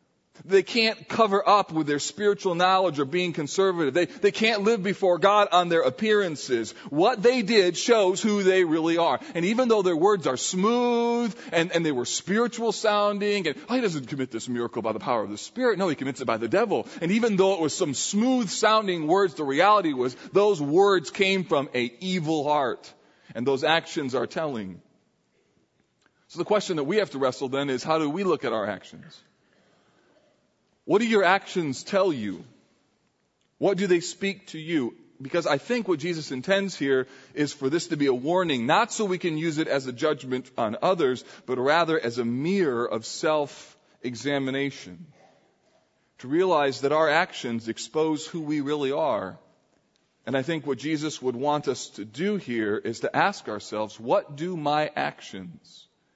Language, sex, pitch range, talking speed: English, male, 140-200 Hz, 185 wpm